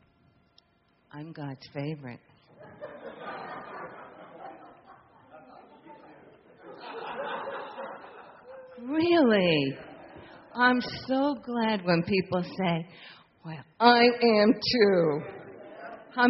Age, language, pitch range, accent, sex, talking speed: 50-69, English, 140-195 Hz, American, female, 55 wpm